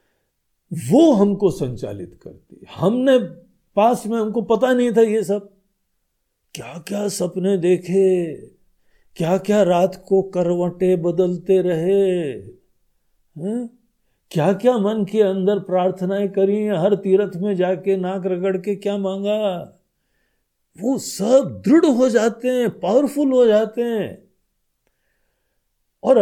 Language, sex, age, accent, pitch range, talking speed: Hindi, male, 50-69, native, 170-230 Hz, 115 wpm